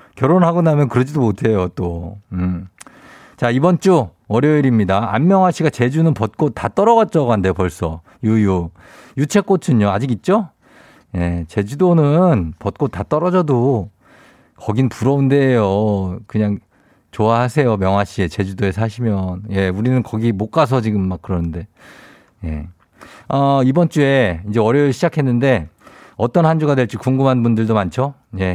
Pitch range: 100-150 Hz